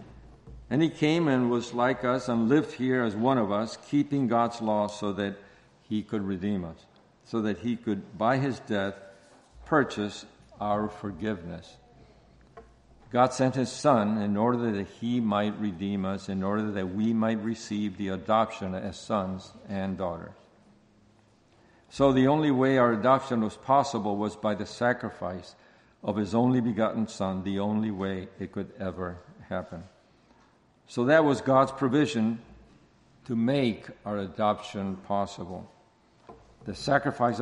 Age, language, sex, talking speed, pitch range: 50-69, English, male, 150 wpm, 100-120 Hz